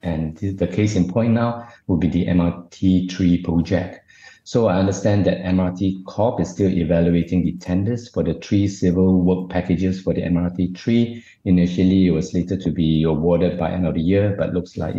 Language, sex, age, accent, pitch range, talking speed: English, male, 50-69, Malaysian, 85-95 Hz, 185 wpm